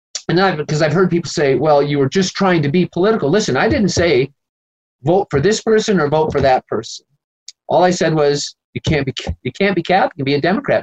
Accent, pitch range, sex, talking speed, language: American, 145-200 Hz, male, 245 wpm, English